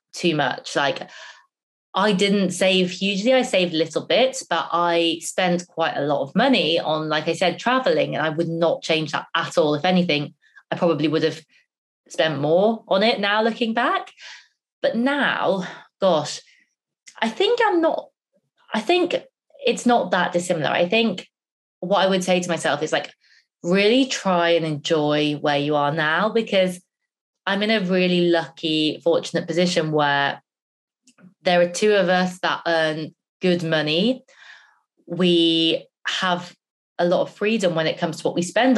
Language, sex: English, female